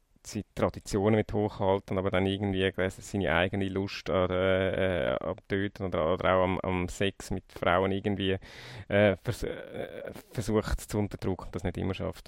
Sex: male